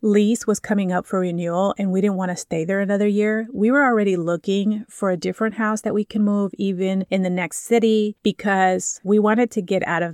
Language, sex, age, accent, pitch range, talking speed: English, female, 30-49, American, 180-215 Hz, 230 wpm